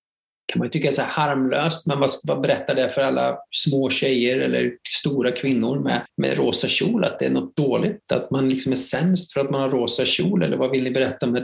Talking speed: 230 wpm